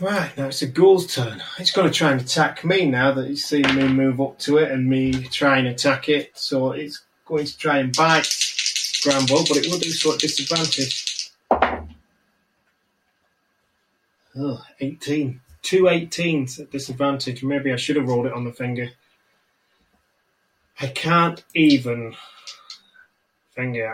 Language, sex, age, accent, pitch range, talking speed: English, male, 30-49, British, 130-155 Hz, 155 wpm